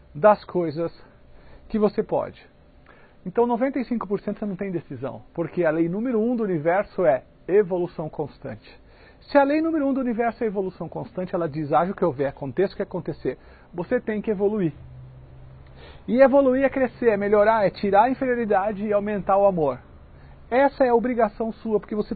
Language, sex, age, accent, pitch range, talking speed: English, male, 50-69, Brazilian, 160-235 Hz, 180 wpm